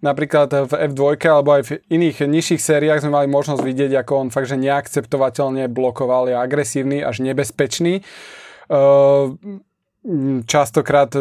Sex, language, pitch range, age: male, Slovak, 135-155 Hz, 20-39